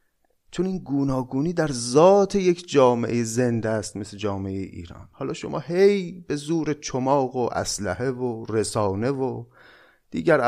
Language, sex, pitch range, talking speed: Persian, male, 115-160 Hz, 135 wpm